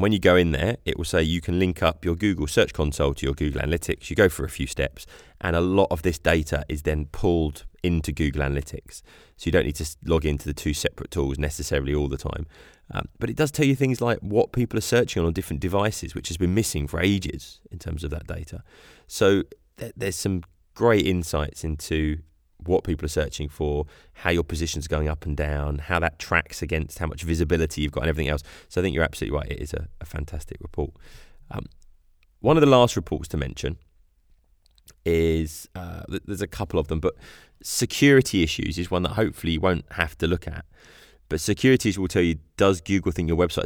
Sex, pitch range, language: male, 75-90 Hz, English